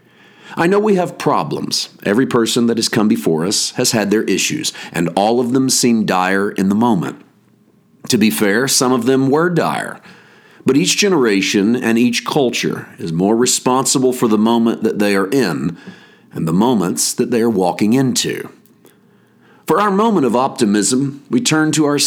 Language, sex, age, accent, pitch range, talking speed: English, male, 50-69, American, 110-140 Hz, 180 wpm